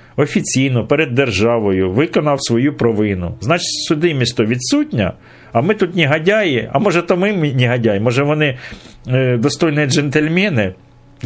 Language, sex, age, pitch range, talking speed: Ukrainian, male, 50-69, 105-155 Hz, 135 wpm